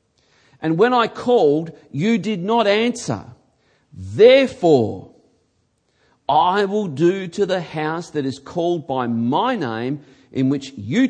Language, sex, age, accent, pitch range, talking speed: English, male, 40-59, Australian, 140-200 Hz, 130 wpm